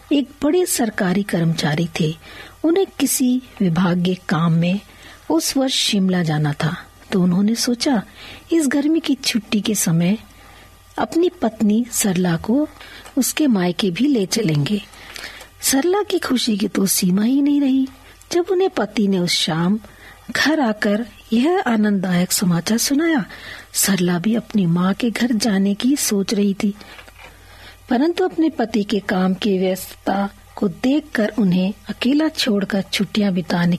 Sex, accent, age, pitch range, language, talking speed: female, native, 50-69, 190-260 Hz, Hindi, 145 wpm